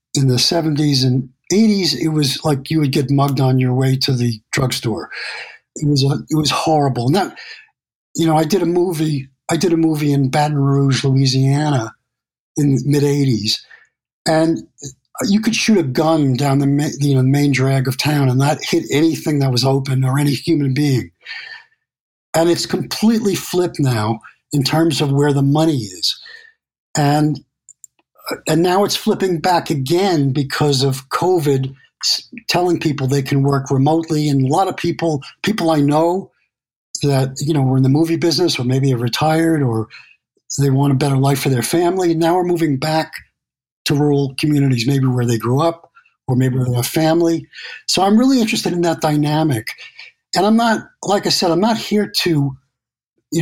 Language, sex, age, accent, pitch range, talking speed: English, male, 60-79, American, 135-165 Hz, 180 wpm